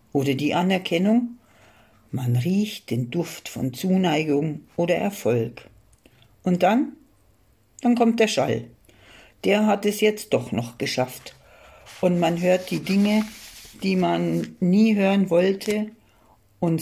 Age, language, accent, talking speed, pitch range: 60-79, German, German, 125 wpm, 130-205 Hz